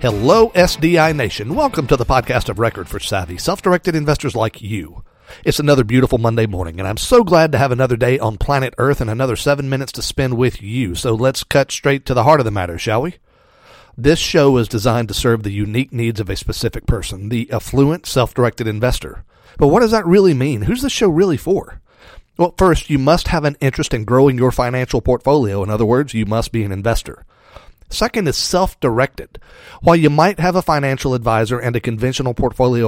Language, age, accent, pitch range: English, 40-59, American, 115-145 Hz